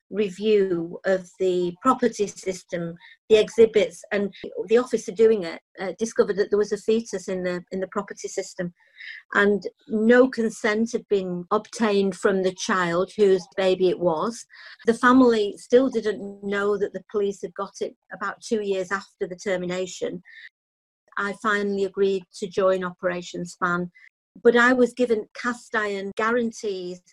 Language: English